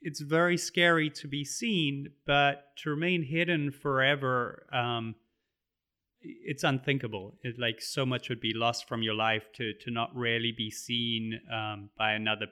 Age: 30-49